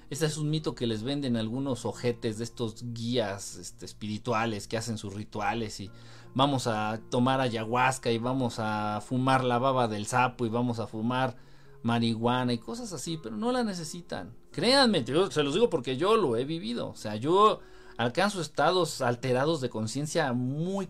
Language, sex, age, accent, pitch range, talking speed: Spanish, male, 50-69, Mexican, 120-165 Hz, 180 wpm